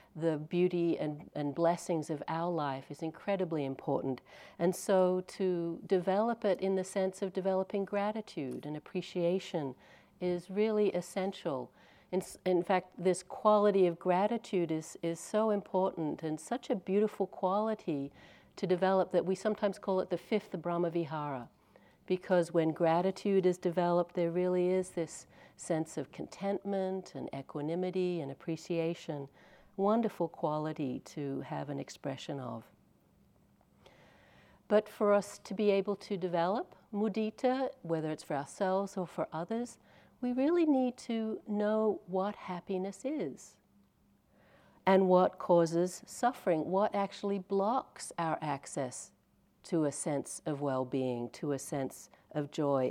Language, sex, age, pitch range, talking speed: English, female, 60-79, 155-200 Hz, 135 wpm